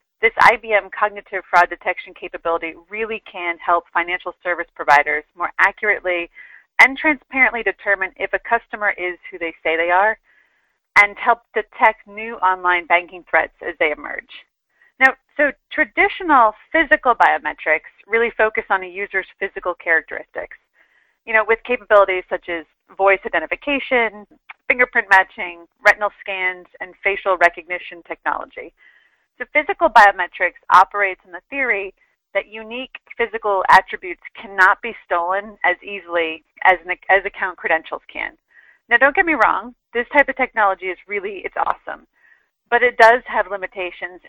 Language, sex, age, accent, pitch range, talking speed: English, female, 30-49, American, 180-235 Hz, 140 wpm